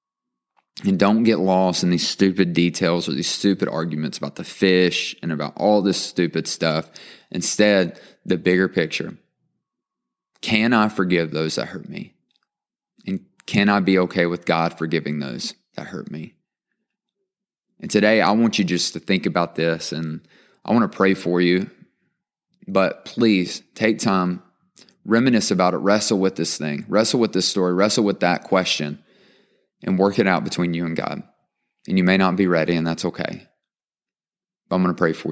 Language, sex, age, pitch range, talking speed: English, male, 20-39, 85-105 Hz, 175 wpm